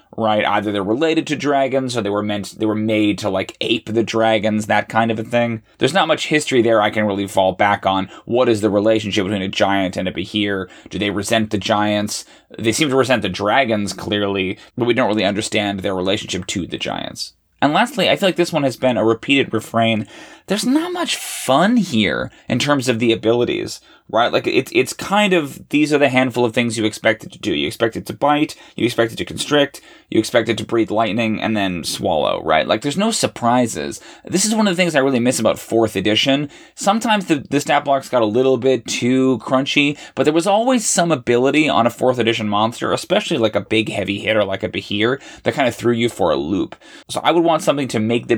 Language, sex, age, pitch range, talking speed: English, male, 20-39, 105-140 Hz, 235 wpm